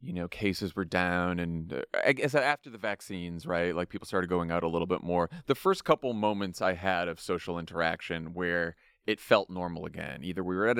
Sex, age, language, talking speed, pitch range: male, 30-49, English, 220 wpm, 90-110 Hz